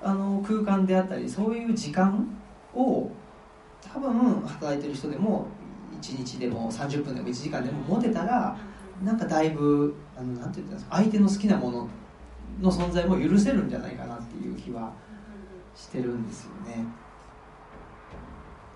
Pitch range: 130-215 Hz